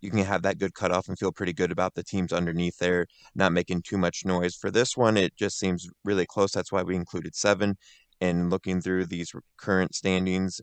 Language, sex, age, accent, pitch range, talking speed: English, male, 20-39, American, 90-105 Hz, 220 wpm